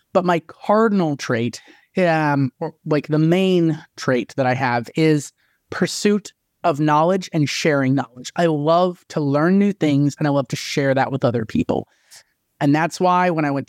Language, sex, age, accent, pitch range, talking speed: English, male, 20-39, American, 145-180 Hz, 175 wpm